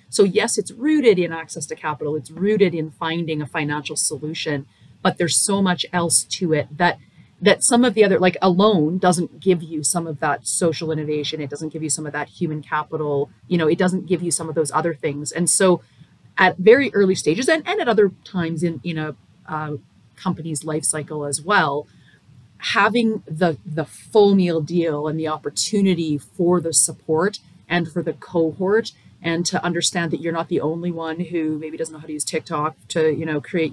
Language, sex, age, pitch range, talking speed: English, female, 30-49, 155-185 Hz, 205 wpm